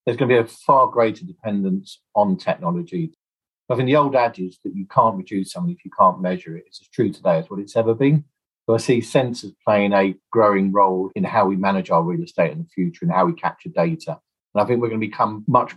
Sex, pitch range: male, 100-160 Hz